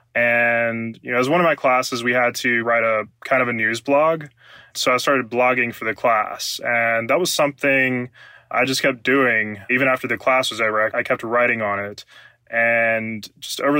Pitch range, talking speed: 115-130 Hz, 210 wpm